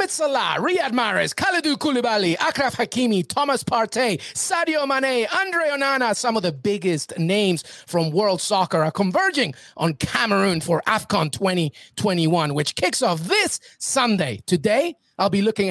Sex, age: male, 30-49